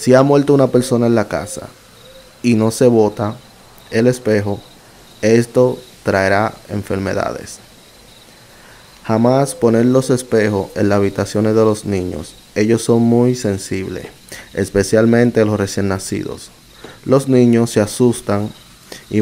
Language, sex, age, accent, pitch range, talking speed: Spanish, male, 20-39, Venezuelan, 105-120 Hz, 125 wpm